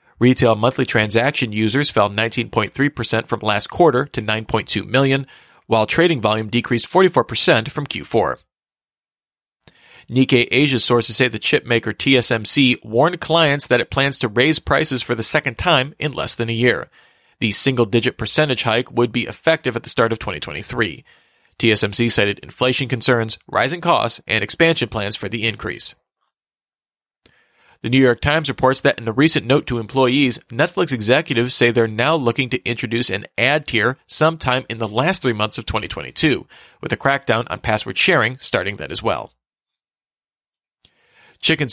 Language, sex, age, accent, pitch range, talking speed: English, male, 40-59, American, 115-135 Hz, 155 wpm